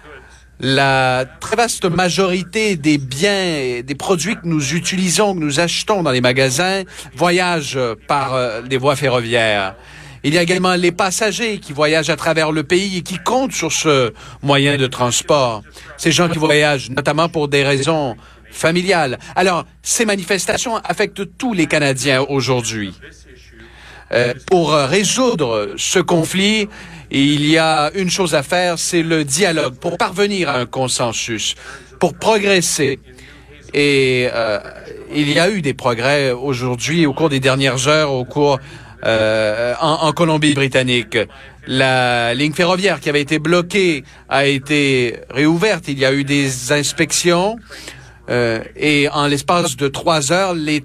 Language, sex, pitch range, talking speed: French, male, 135-175 Hz, 150 wpm